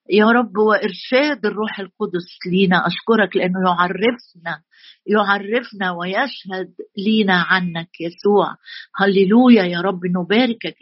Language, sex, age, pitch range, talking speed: Arabic, female, 50-69, 185-230 Hz, 100 wpm